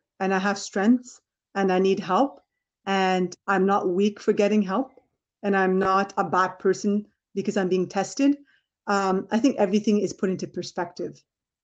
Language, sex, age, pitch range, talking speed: English, female, 30-49, 185-210 Hz, 170 wpm